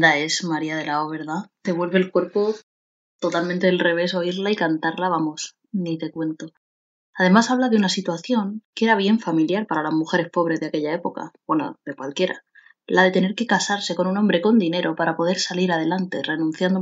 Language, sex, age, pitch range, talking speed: Spanish, female, 20-39, 165-205 Hz, 195 wpm